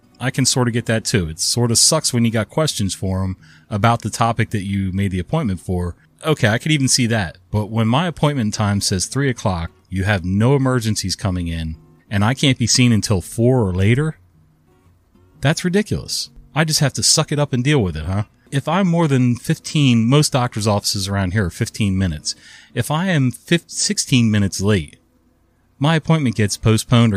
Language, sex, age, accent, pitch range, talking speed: English, male, 30-49, American, 95-125 Hz, 205 wpm